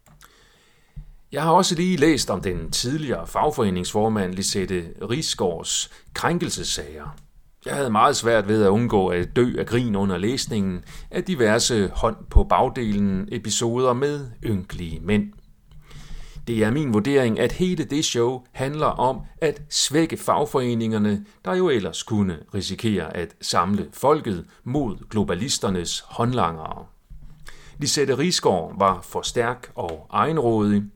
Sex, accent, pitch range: male, native, 100-150 Hz